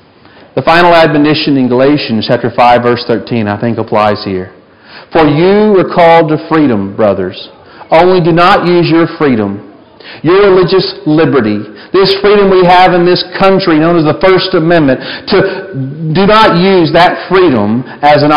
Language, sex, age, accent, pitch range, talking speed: English, male, 40-59, American, 125-175 Hz, 160 wpm